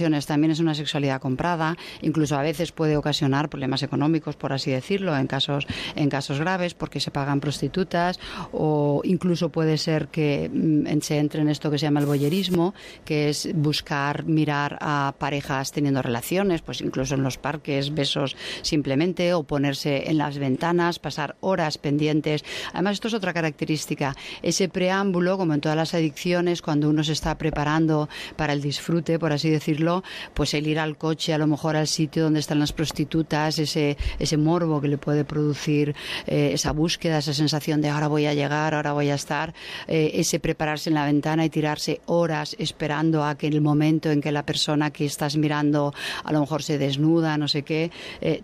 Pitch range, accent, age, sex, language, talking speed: 145-165 Hz, Spanish, 40-59, female, Spanish, 185 wpm